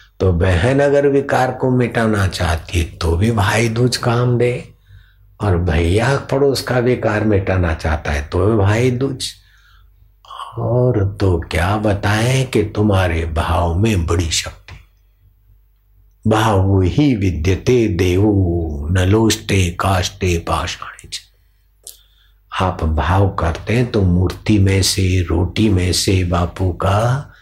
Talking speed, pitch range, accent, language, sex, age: 120 wpm, 90-105 Hz, native, Hindi, male, 60-79